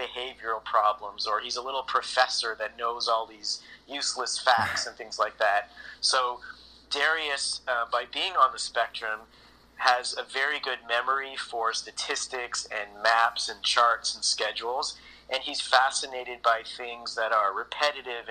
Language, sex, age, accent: English, male, 30-49, American